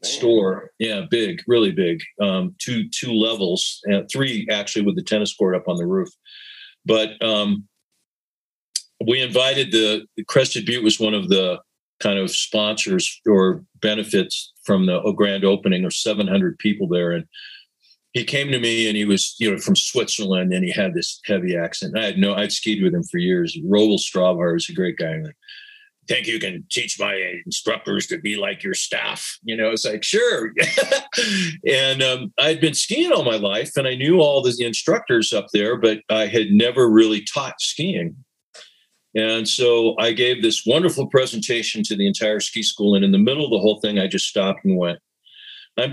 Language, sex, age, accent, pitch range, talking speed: English, male, 50-69, American, 100-155 Hz, 185 wpm